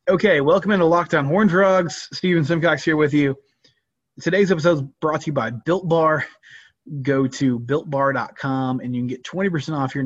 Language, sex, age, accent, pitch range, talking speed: English, male, 20-39, American, 130-160 Hz, 180 wpm